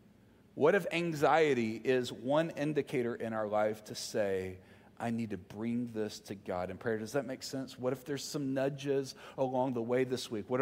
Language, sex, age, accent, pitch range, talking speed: English, male, 40-59, American, 125-160 Hz, 200 wpm